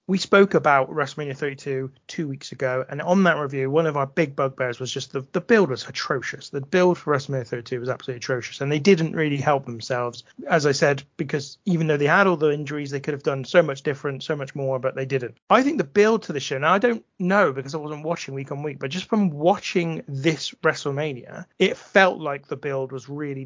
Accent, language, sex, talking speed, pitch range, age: British, English, male, 240 wpm, 135-165 Hz, 30-49